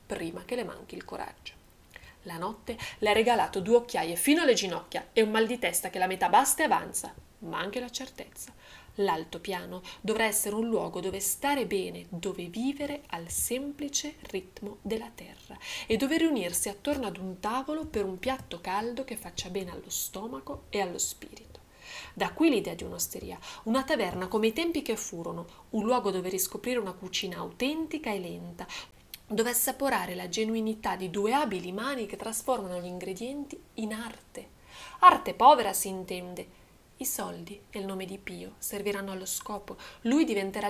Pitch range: 190-255 Hz